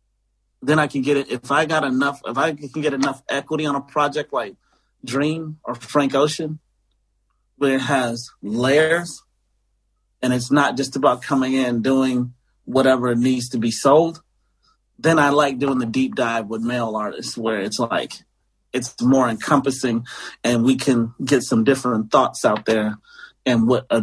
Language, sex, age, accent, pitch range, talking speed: English, male, 30-49, American, 115-140 Hz, 170 wpm